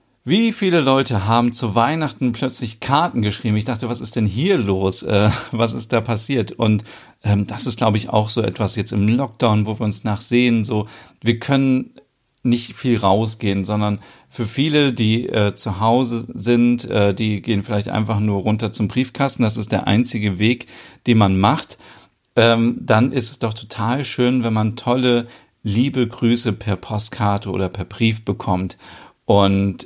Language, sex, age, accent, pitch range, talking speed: German, male, 40-59, German, 105-120 Hz, 175 wpm